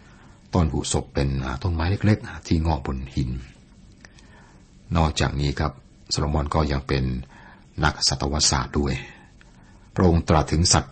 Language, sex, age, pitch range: Thai, male, 60-79, 65-80 Hz